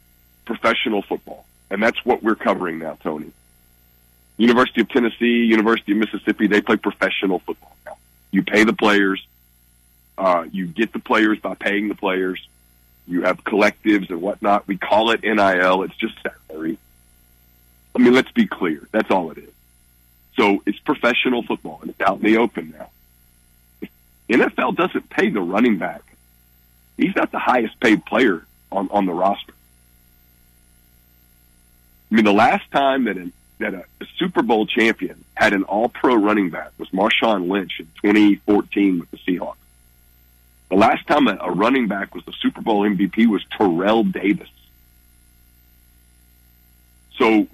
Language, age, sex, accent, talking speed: English, 40-59, male, American, 155 wpm